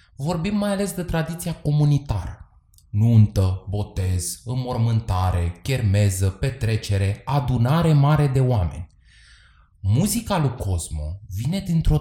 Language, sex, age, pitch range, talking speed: Romanian, male, 20-39, 95-145 Hz, 100 wpm